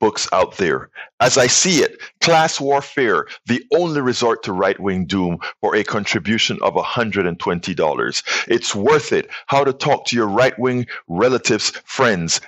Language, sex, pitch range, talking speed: English, male, 115-150 Hz, 150 wpm